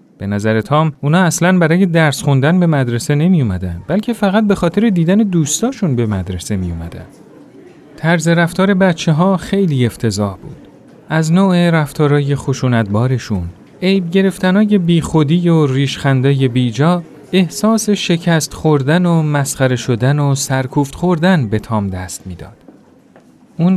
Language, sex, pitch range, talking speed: Persian, male, 130-185 Hz, 135 wpm